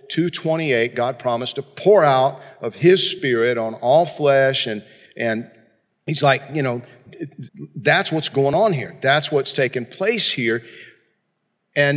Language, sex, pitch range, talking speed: English, male, 130-165 Hz, 145 wpm